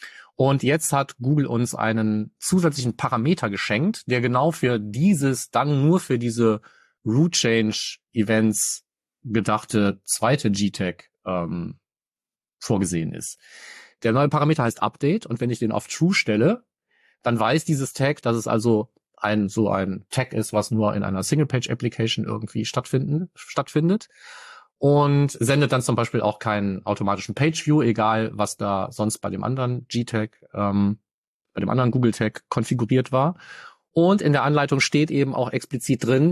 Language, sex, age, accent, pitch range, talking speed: German, male, 40-59, German, 110-140 Hz, 150 wpm